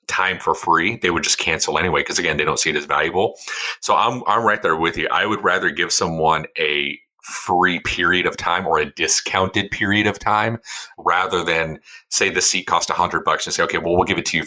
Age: 30-49